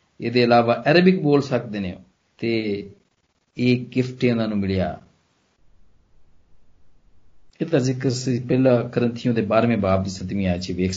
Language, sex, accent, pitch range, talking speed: Hindi, male, native, 115-165 Hz, 100 wpm